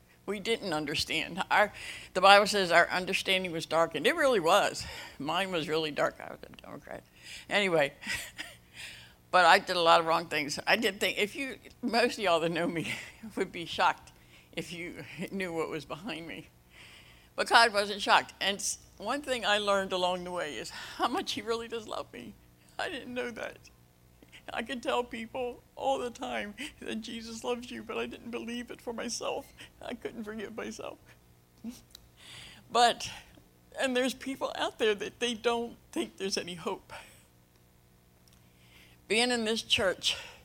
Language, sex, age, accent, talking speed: English, female, 60-79, American, 170 wpm